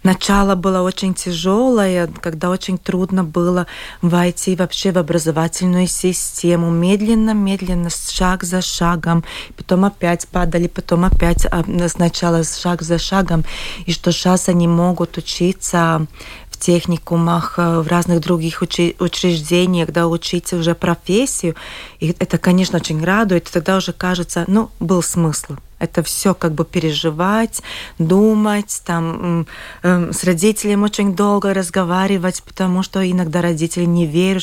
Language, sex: Russian, female